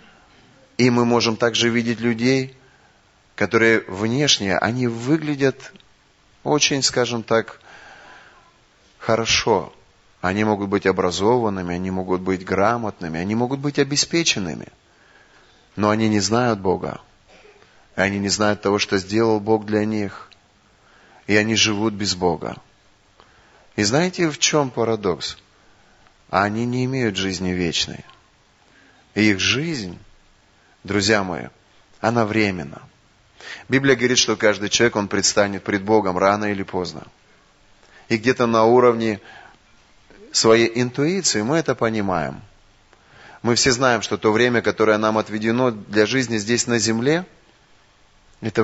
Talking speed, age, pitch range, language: 120 wpm, 30-49, 100-125 Hz, Russian